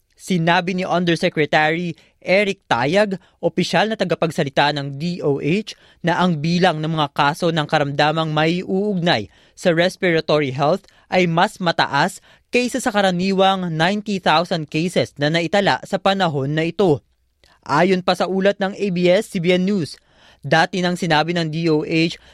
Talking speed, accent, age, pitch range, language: 130 wpm, native, 20-39, 150-185 Hz, Filipino